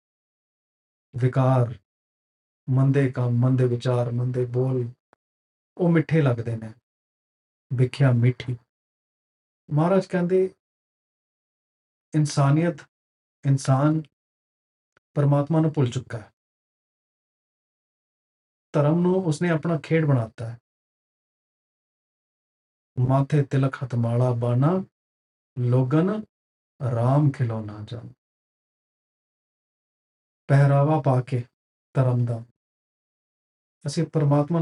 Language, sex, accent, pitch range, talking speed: English, male, Indian, 115-150 Hz, 75 wpm